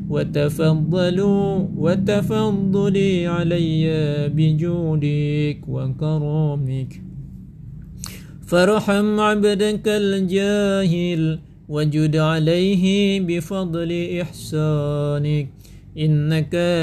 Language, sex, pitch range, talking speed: Indonesian, male, 155-195 Hz, 60 wpm